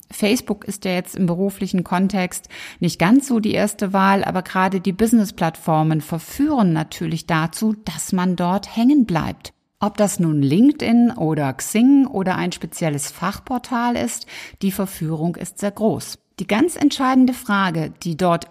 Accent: German